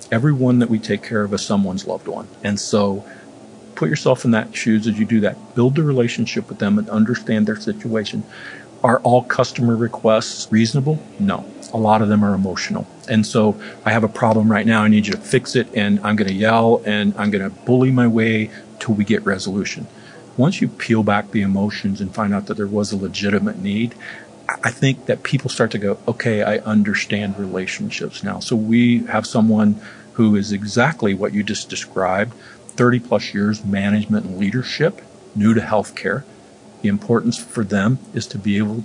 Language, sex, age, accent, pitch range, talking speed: English, male, 50-69, American, 105-120 Hz, 195 wpm